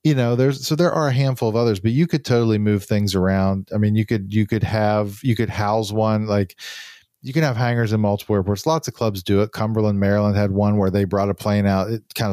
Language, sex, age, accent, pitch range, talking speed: English, male, 40-59, American, 100-120 Hz, 260 wpm